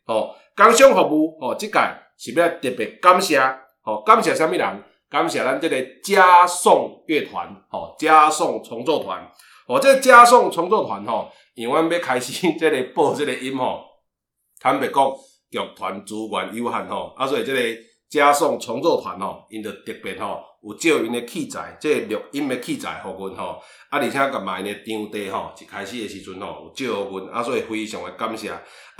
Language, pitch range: Chinese, 105-165 Hz